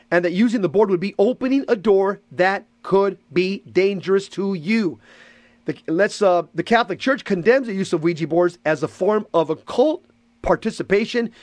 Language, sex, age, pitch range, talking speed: English, male, 40-59, 165-205 Hz, 170 wpm